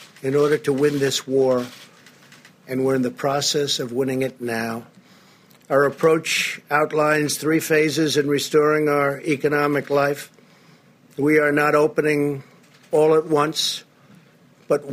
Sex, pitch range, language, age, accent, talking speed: male, 145-160 Hz, English, 50-69, American, 135 wpm